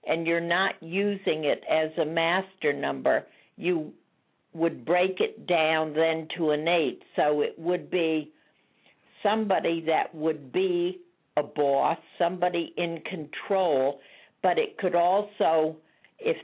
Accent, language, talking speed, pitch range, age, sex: American, English, 130 wpm, 155-190 Hz, 60-79, female